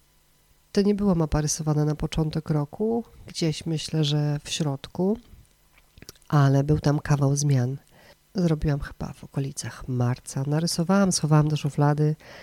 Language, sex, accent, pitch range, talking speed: Polish, female, native, 145-165 Hz, 130 wpm